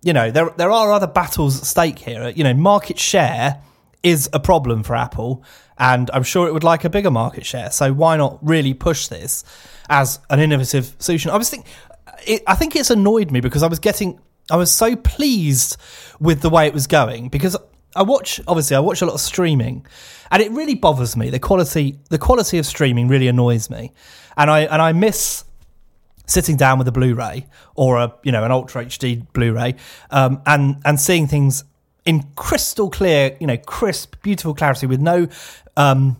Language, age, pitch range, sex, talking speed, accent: English, 30-49, 130-190 Hz, male, 195 wpm, British